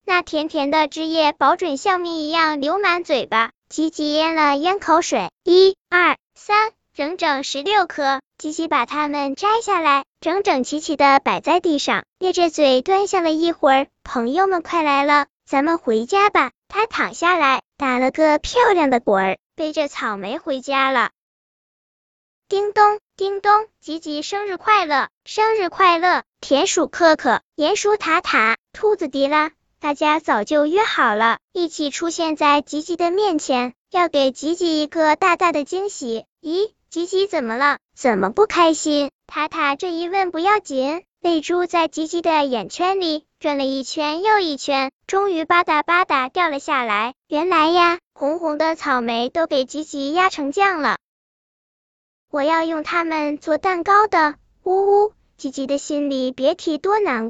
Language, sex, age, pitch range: Chinese, male, 10-29, 285-360 Hz